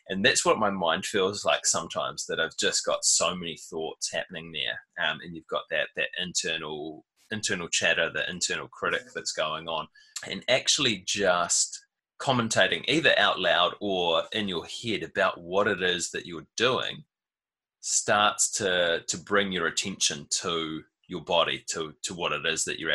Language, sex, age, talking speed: English, male, 20-39, 170 wpm